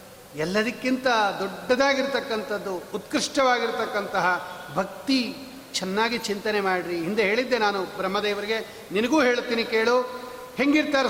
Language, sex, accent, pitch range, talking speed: Kannada, male, native, 220-255 Hz, 80 wpm